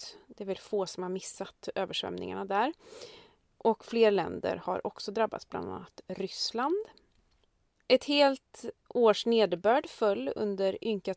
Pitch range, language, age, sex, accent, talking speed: 195-270 Hz, Swedish, 30-49, female, native, 135 wpm